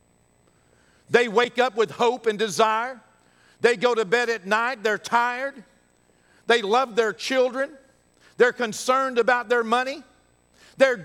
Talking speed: 135 wpm